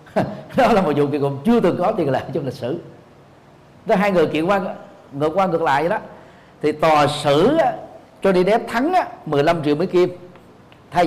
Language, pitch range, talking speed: Vietnamese, 135-185 Hz, 200 wpm